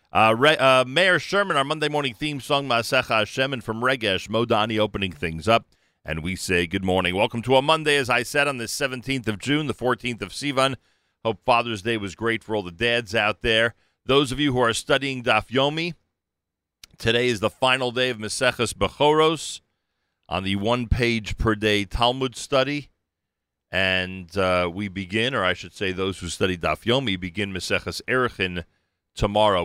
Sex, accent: male, American